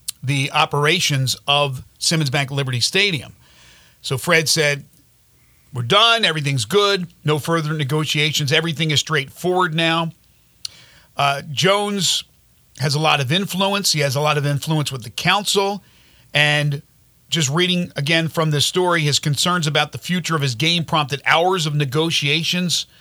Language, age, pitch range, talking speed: English, 40-59, 145-180 Hz, 145 wpm